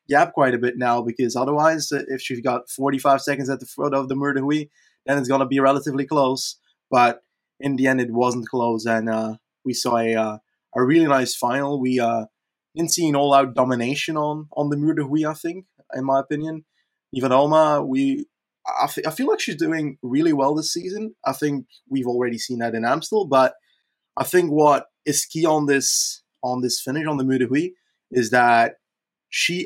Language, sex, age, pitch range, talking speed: English, male, 20-39, 125-155 Hz, 195 wpm